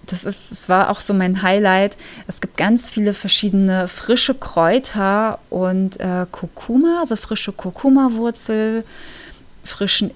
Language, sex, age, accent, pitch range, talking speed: German, female, 20-39, German, 180-215 Hz, 125 wpm